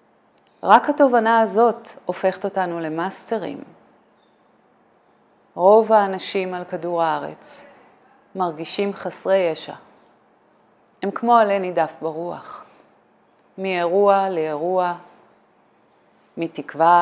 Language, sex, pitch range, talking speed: Hebrew, female, 155-190 Hz, 80 wpm